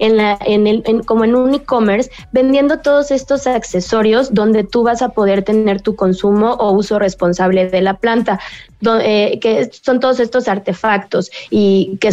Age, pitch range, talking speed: 20-39, 200-250 Hz, 180 wpm